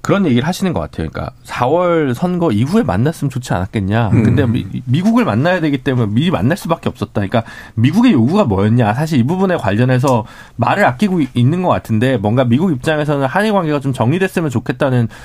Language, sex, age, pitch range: Korean, male, 40-59, 115-165 Hz